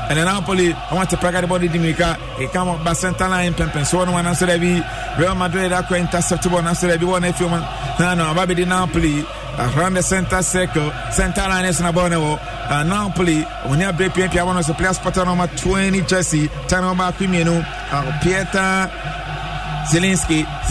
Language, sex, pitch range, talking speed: English, male, 170-195 Hz, 170 wpm